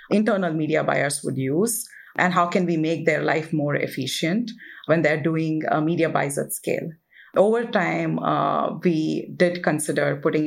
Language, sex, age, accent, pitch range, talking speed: English, female, 30-49, Indian, 155-180 Hz, 165 wpm